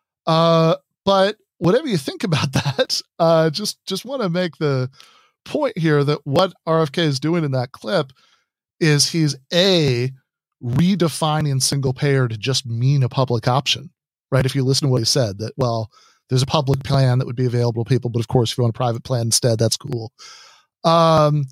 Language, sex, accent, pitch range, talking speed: English, male, American, 125-165 Hz, 190 wpm